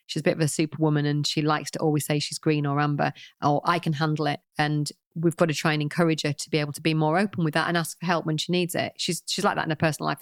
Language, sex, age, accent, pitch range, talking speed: English, female, 40-59, British, 155-175 Hz, 315 wpm